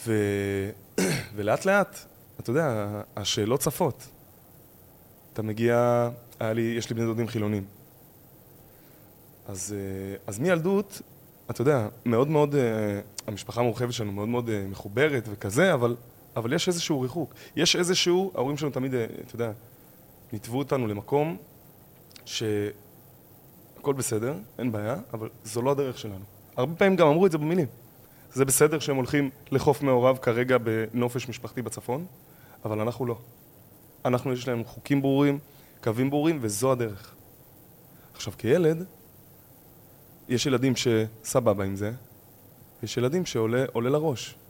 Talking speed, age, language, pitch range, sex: 125 wpm, 20-39, Hebrew, 110-145 Hz, male